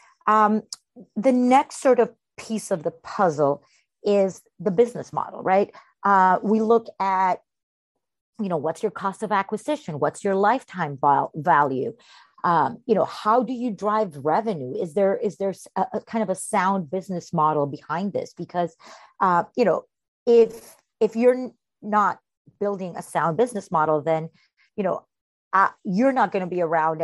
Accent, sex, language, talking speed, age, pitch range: American, female, English, 165 wpm, 40-59, 165-220 Hz